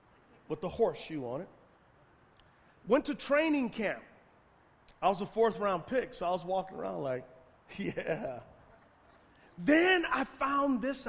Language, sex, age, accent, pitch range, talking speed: English, male, 40-59, American, 160-260 Hz, 140 wpm